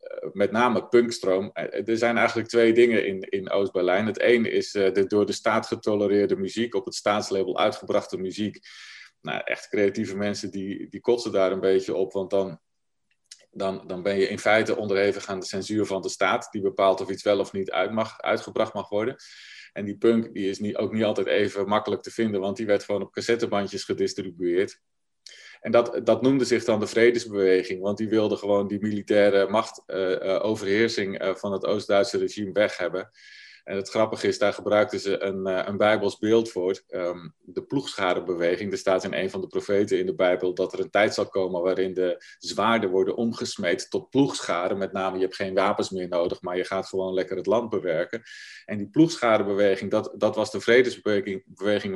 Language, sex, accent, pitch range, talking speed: Dutch, male, Dutch, 95-110 Hz, 195 wpm